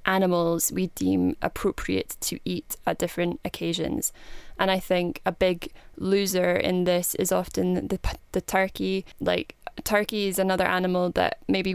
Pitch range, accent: 170-185 Hz, British